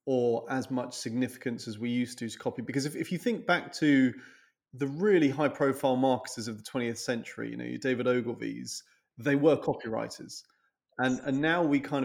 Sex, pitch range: male, 120-140 Hz